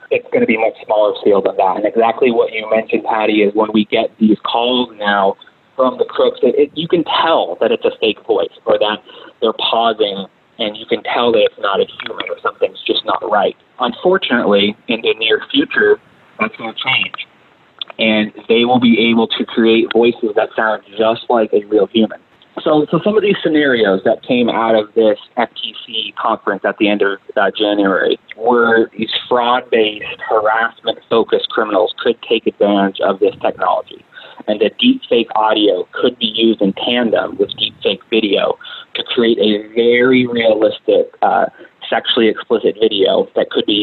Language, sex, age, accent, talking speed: English, male, 20-39, American, 185 wpm